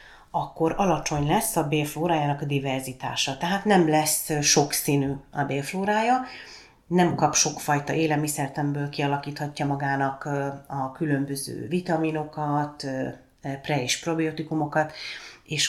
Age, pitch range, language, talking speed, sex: 30-49, 140-160 Hz, Hungarian, 100 wpm, female